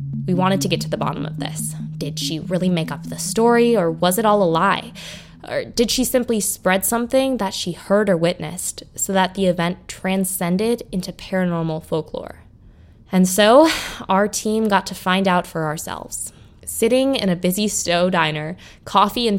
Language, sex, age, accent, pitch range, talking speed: English, female, 20-39, American, 160-205 Hz, 185 wpm